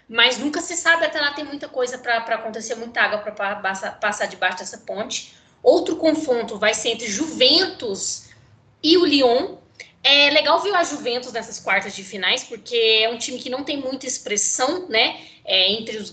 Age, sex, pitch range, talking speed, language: 20-39, female, 220-295 Hz, 180 wpm, Portuguese